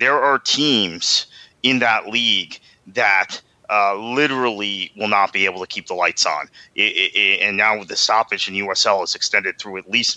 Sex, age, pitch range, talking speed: male, 30-49, 105-130 Hz, 175 wpm